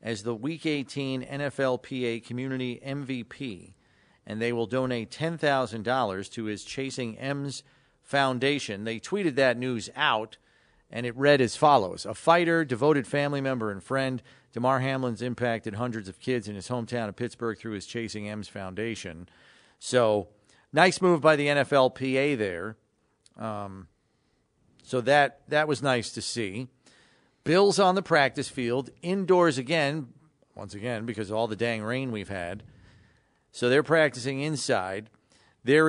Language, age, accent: English, 40-59, American